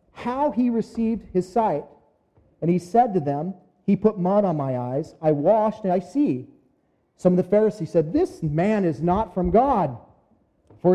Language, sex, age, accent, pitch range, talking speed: English, male, 40-59, American, 155-220 Hz, 180 wpm